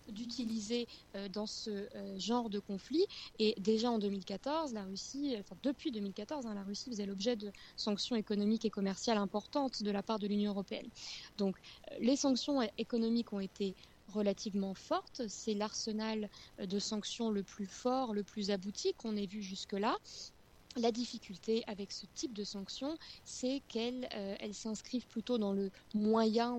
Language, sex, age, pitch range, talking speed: French, female, 20-39, 205-245 Hz, 155 wpm